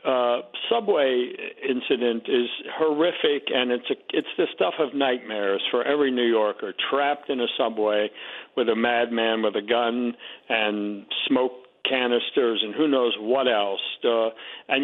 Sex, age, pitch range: male, 60-79, 120-150 Hz